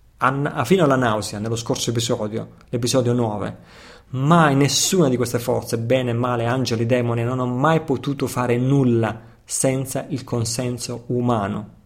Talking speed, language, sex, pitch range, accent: 140 wpm, Italian, male, 115-150 Hz, native